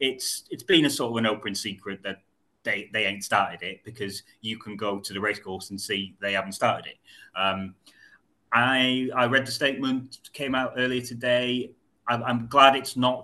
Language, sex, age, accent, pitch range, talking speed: English, male, 30-49, British, 100-120 Hz, 200 wpm